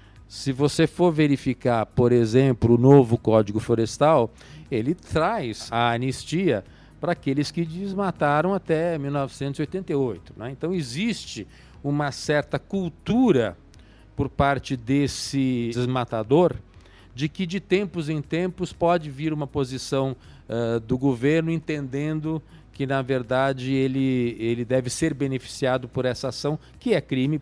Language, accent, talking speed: Portuguese, Brazilian, 125 wpm